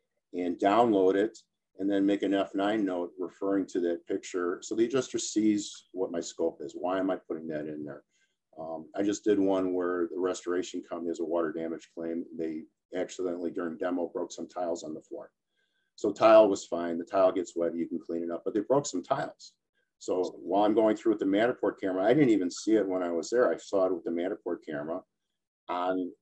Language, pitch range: English, 90-115 Hz